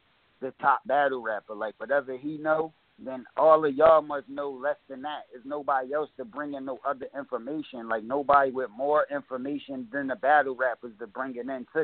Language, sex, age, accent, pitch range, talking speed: English, male, 30-49, American, 130-150 Hz, 205 wpm